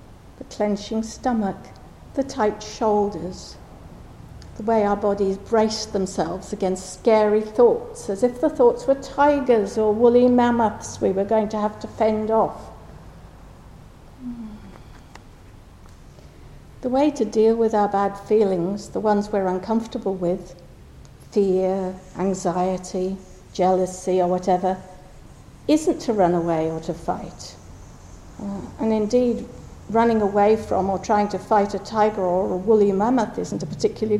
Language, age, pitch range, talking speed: English, 60-79, 185-235 Hz, 130 wpm